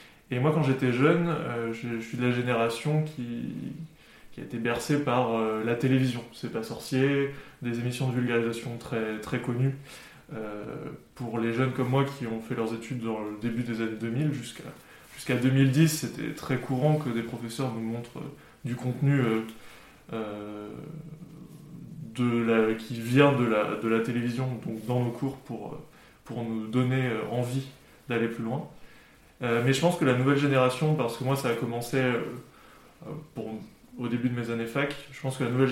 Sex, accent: male, French